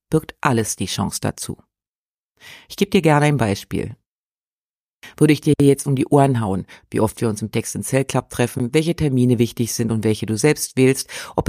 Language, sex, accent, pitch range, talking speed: German, female, German, 115-140 Hz, 205 wpm